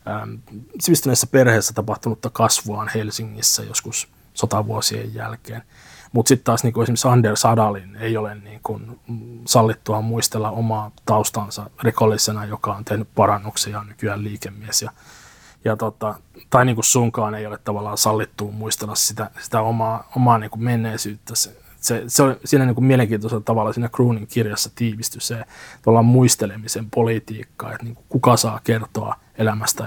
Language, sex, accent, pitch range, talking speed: Finnish, male, native, 110-120 Hz, 130 wpm